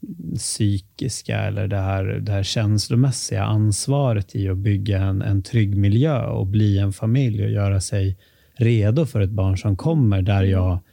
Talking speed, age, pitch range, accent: 165 wpm, 30-49, 95-115 Hz, Swedish